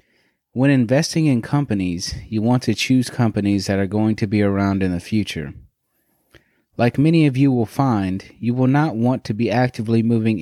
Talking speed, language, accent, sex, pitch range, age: 185 wpm, English, American, male, 100-125 Hz, 30-49